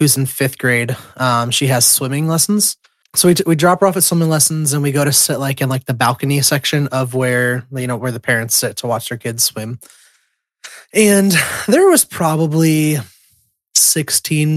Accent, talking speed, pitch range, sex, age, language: American, 200 wpm, 135-175 Hz, male, 20-39, English